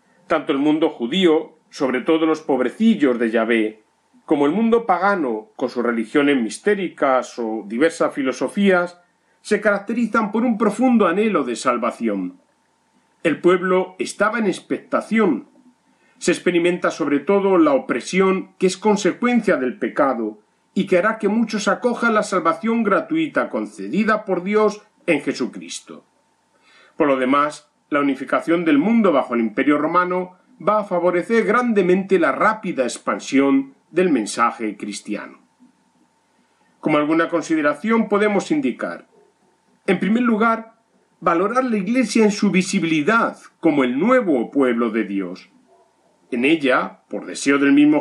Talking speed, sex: 130 wpm, male